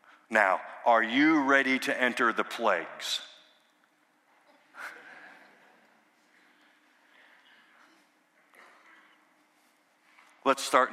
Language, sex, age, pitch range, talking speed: English, male, 50-69, 130-200 Hz, 55 wpm